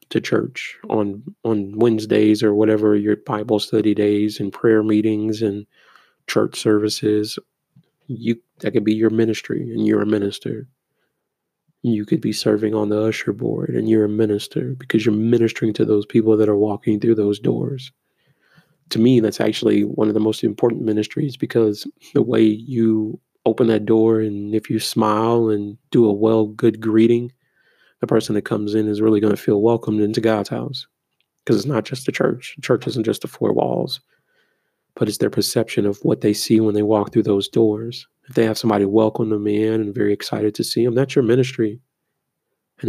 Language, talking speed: English, 190 wpm